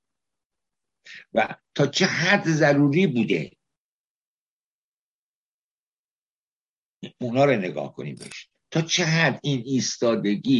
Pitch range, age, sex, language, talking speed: 110-150 Hz, 60-79, male, Persian, 80 wpm